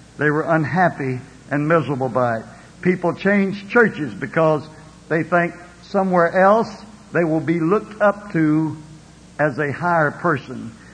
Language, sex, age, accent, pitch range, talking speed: English, male, 60-79, American, 155-210 Hz, 135 wpm